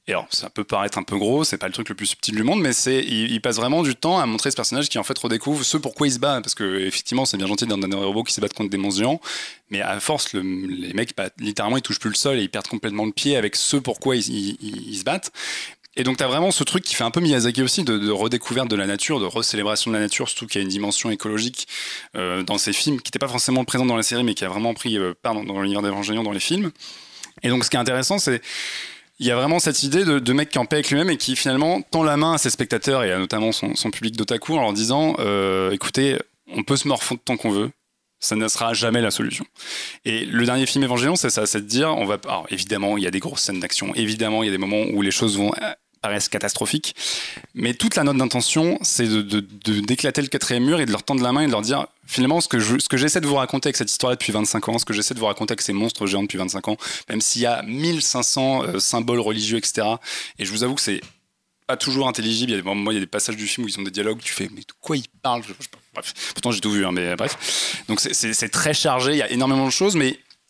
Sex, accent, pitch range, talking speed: male, French, 105-130 Hz, 290 wpm